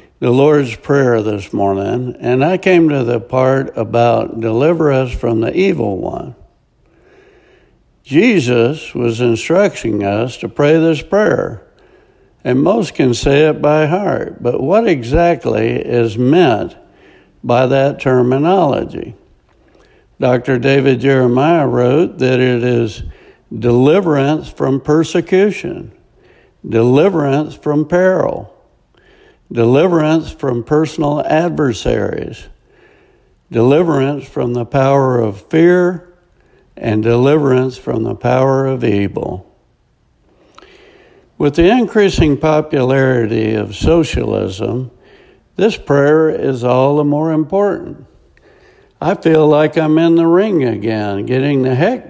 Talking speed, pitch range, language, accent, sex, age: 110 wpm, 120-165 Hz, English, American, male, 60-79